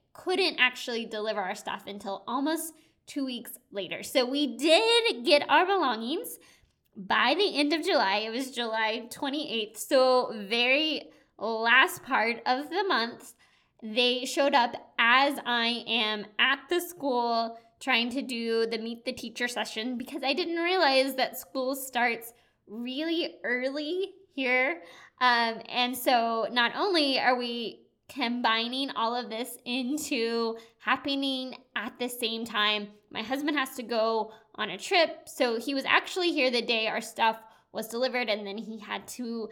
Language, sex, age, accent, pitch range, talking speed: English, female, 20-39, American, 230-295 Hz, 150 wpm